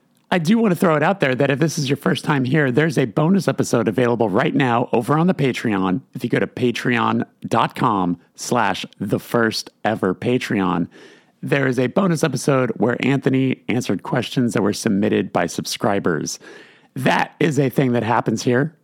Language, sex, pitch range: English, male, 115-150 Hz